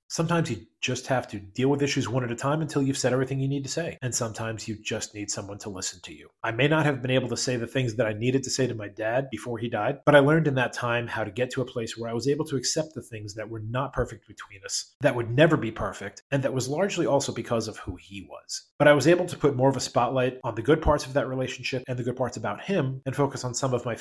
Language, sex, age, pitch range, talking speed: English, male, 30-49, 115-140 Hz, 300 wpm